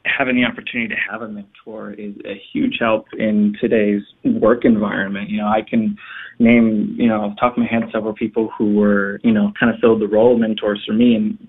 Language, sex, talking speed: English, male, 220 wpm